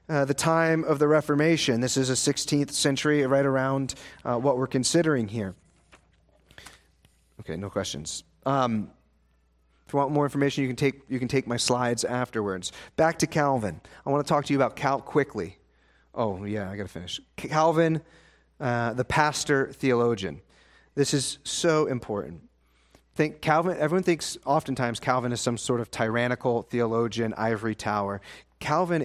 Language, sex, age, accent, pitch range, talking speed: English, male, 30-49, American, 120-160 Hz, 160 wpm